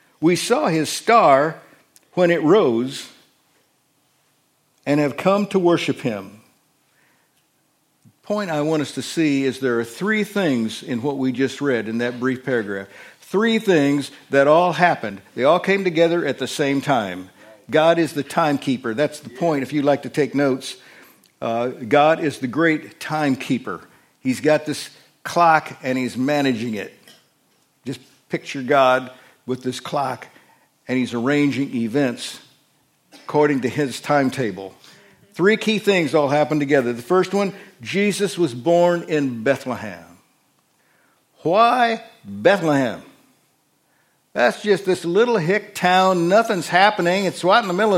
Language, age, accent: English, 50-69, American